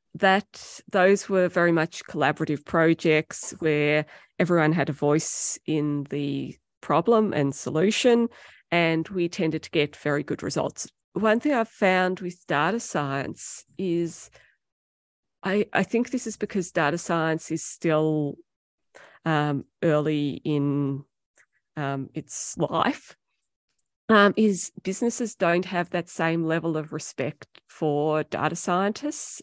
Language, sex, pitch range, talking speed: English, female, 150-180 Hz, 125 wpm